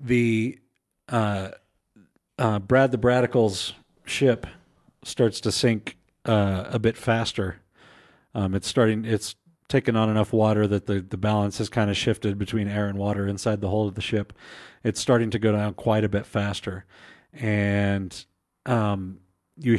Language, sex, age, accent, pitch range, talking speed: English, male, 40-59, American, 100-115 Hz, 160 wpm